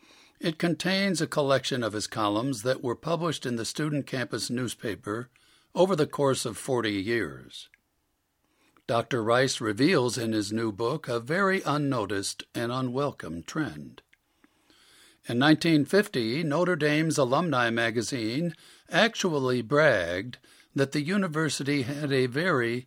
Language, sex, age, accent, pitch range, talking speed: English, male, 60-79, American, 125-160 Hz, 125 wpm